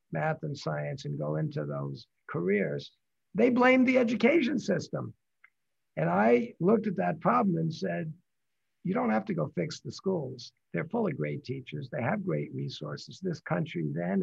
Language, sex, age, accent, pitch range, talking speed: English, male, 60-79, American, 145-190 Hz, 175 wpm